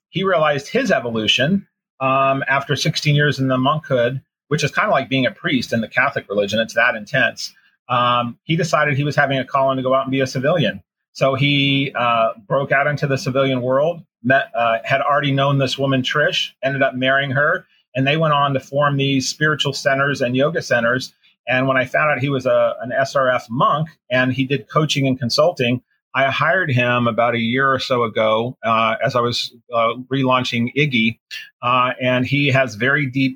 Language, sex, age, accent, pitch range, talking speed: English, male, 30-49, American, 120-140 Hz, 205 wpm